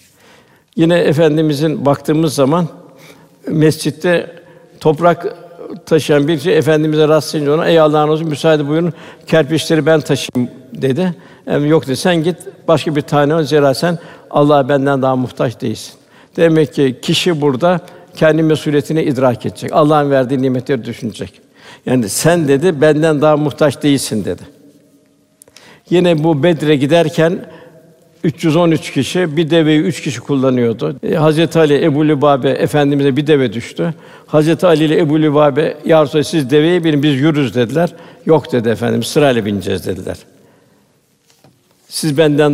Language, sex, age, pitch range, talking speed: Turkish, male, 60-79, 140-165 Hz, 135 wpm